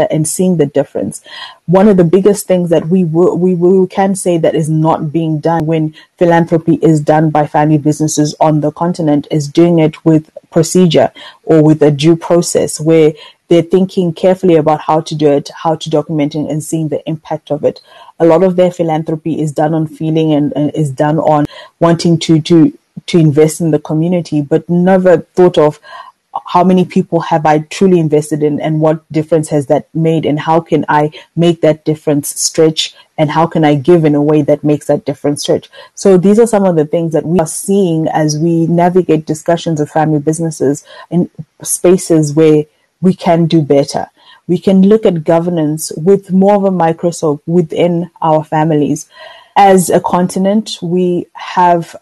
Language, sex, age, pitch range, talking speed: English, female, 20-39, 155-180 Hz, 190 wpm